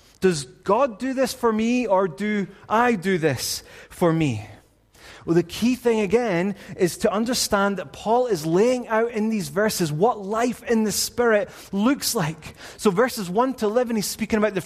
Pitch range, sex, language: 185-230 Hz, male, English